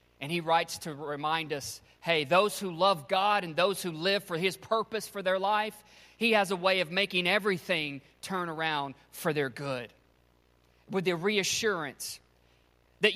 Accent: American